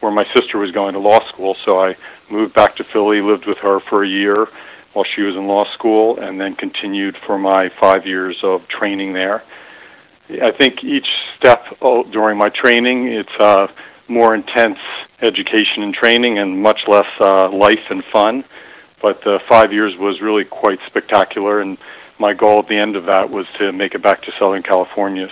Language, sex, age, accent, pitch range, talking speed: English, male, 50-69, American, 95-105 Hz, 195 wpm